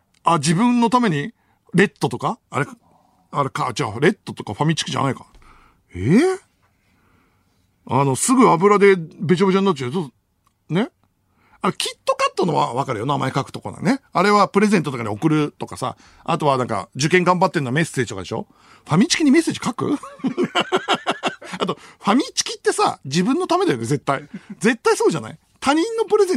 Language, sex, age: Japanese, male, 60-79